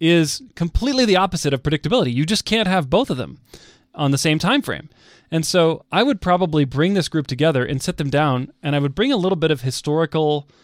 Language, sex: English, male